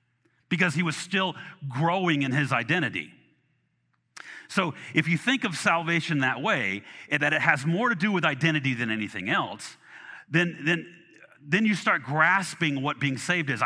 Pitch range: 135-175 Hz